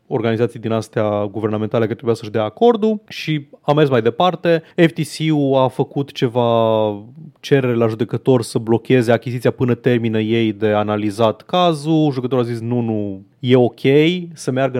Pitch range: 115-160 Hz